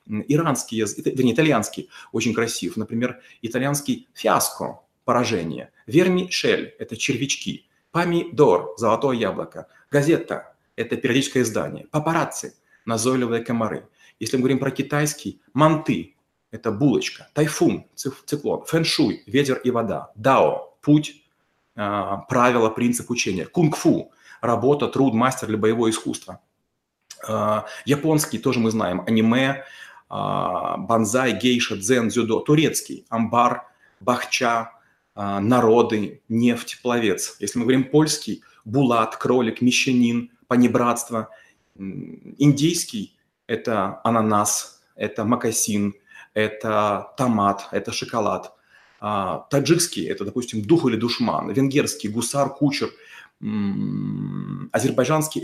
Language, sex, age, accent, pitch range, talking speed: Russian, male, 30-49, native, 115-145 Hz, 115 wpm